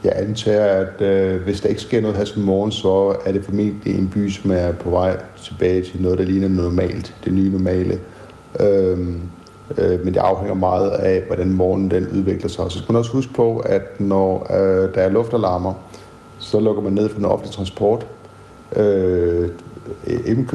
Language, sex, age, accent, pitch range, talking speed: Danish, male, 60-79, native, 90-100 Hz, 190 wpm